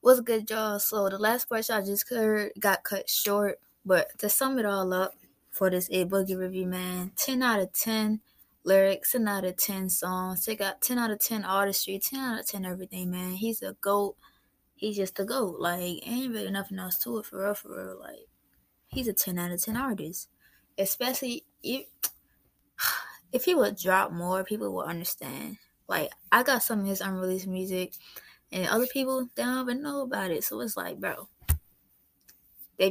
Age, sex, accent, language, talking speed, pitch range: 20-39, female, American, English, 195 wpm, 180-215 Hz